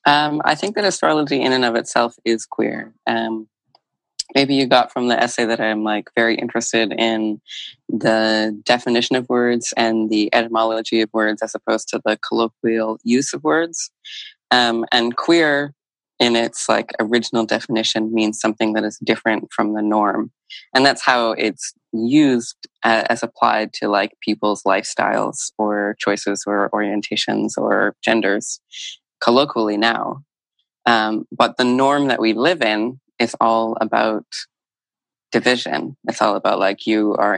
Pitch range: 110-125 Hz